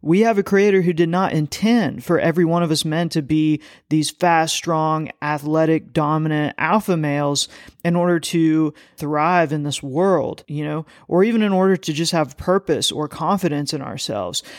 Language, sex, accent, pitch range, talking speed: English, male, American, 155-180 Hz, 180 wpm